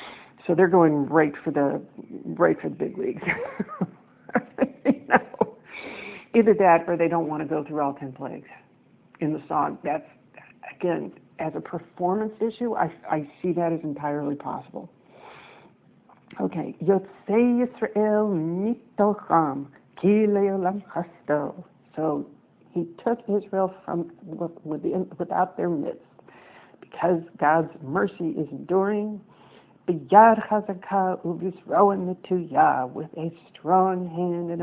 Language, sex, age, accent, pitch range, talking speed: English, female, 60-79, American, 165-210 Hz, 115 wpm